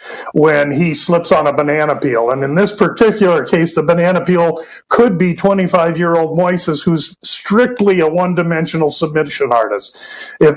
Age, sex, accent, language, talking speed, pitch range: 50-69, male, American, English, 160 wpm, 160-195 Hz